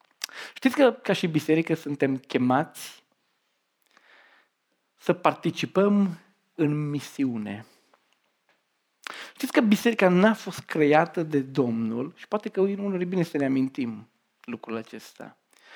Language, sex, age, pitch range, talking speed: Romanian, male, 40-59, 120-185 Hz, 120 wpm